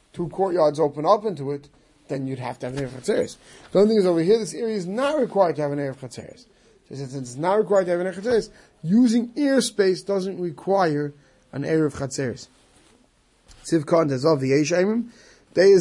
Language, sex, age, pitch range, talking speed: English, male, 30-49, 150-210 Hz, 215 wpm